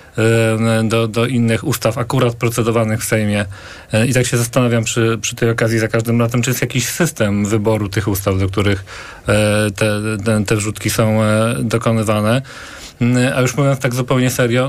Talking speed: 165 wpm